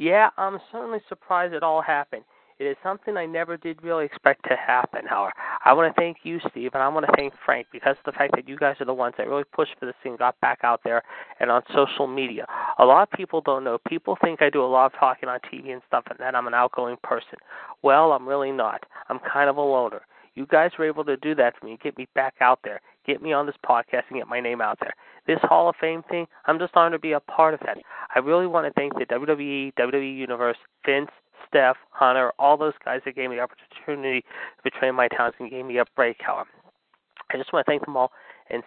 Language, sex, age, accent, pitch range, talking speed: English, male, 30-49, American, 130-165 Hz, 260 wpm